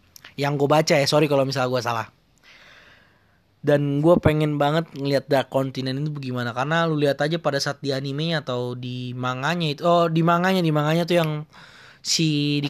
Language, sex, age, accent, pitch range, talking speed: Indonesian, male, 20-39, native, 145-190 Hz, 185 wpm